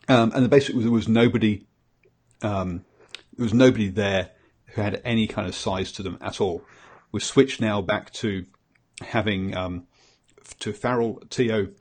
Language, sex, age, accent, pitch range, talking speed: English, male, 40-59, British, 95-115 Hz, 175 wpm